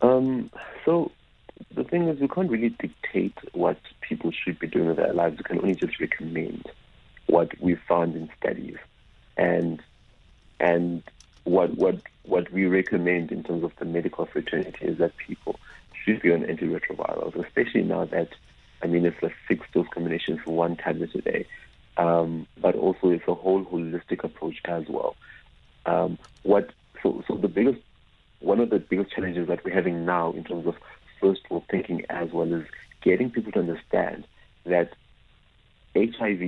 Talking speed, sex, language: 165 wpm, male, English